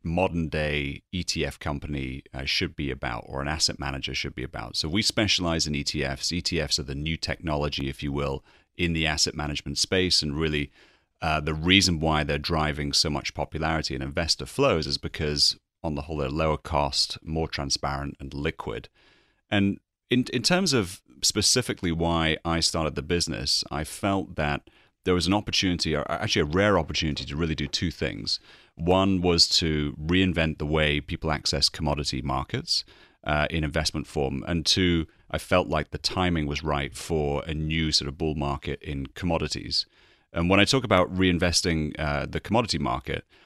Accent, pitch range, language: British, 75-90 Hz, English